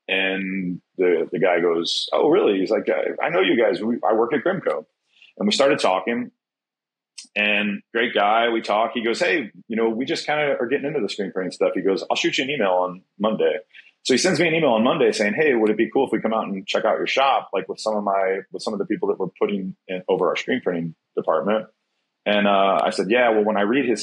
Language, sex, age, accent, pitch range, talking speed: English, male, 30-49, American, 105-165 Hz, 255 wpm